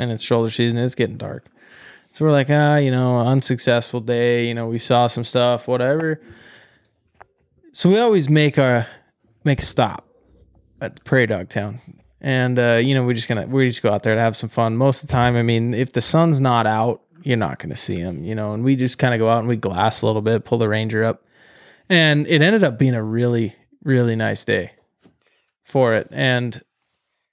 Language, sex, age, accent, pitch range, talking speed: English, male, 20-39, American, 120-150 Hz, 215 wpm